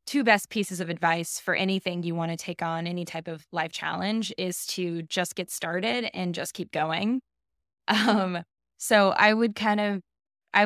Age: 20-39